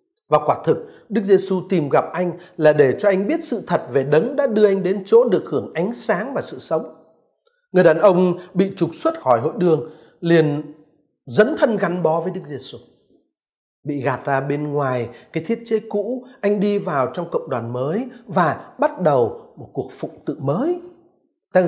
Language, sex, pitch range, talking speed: Vietnamese, male, 155-235 Hz, 195 wpm